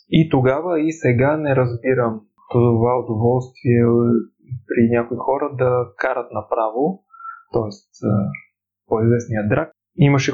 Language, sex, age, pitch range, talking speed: Bulgarian, male, 20-39, 125-155 Hz, 110 wpm